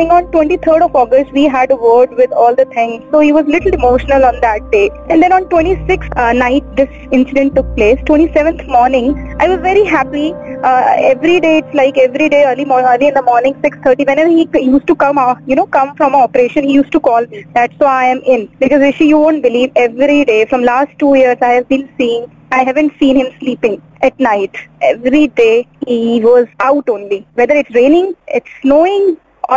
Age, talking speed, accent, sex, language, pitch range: 20-39, 225 wpm, native, female, Hindi, 255-330 Hz